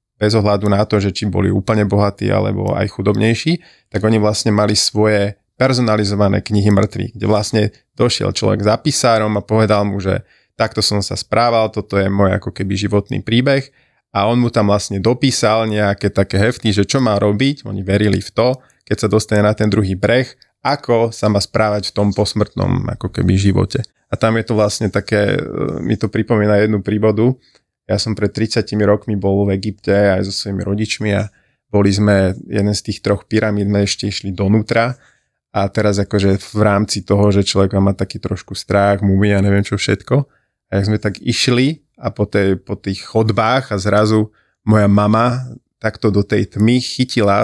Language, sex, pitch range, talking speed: Slovak, male, 100-115 Hz, 185 wpm